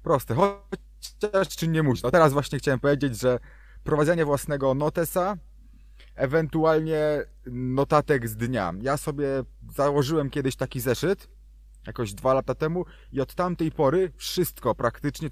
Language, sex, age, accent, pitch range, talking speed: Polish, male, 30-49, native, 125-150 Hz, 135 wpm